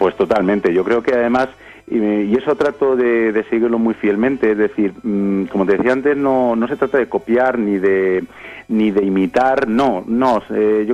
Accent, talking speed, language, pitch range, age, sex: Spanish, 185 wpm, Spanish, 105-130 Hz, 40-59, male